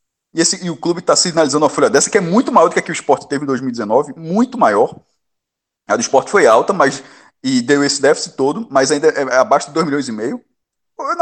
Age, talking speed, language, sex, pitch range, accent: 20-39, 250 wpm, Portuguese, male, 140-195 Hz, Brazilian